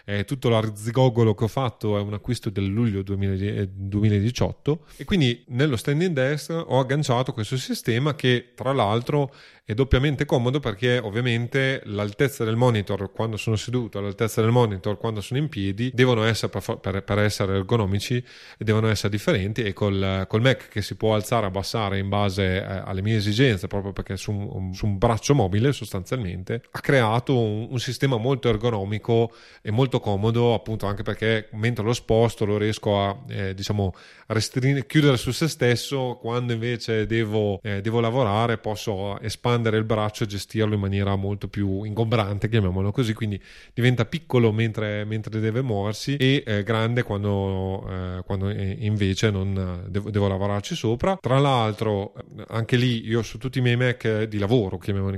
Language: Italian